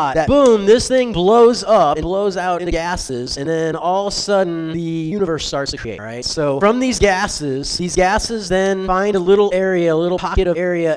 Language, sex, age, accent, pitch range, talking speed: English, male, 30-49, American, 155-205 Hz, 215 wpm